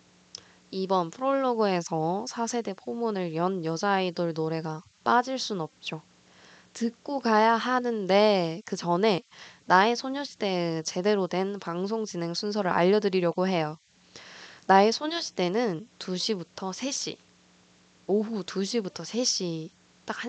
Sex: female